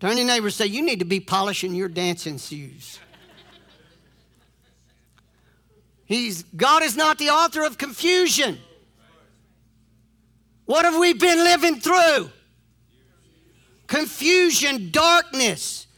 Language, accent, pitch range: English, American, 185-305 Hz